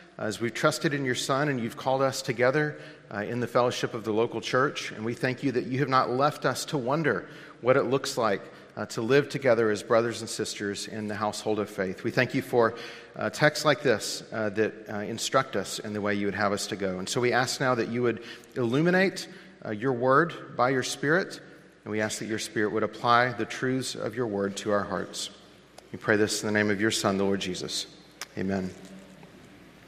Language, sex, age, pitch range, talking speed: English, male, 40-59, 110-155 Hz, 230 wpm